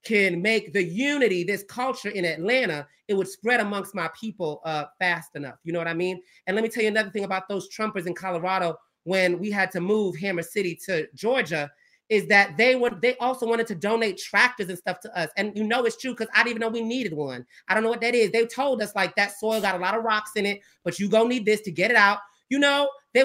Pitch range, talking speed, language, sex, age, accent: 175-230 Hz, 260 wpm, English, male, 30-49, American